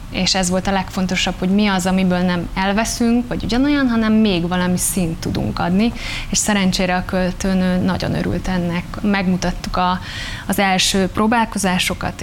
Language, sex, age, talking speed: Hungarian, female, 20-39, 150 wpm